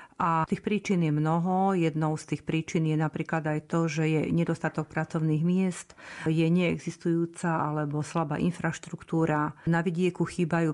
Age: 40-59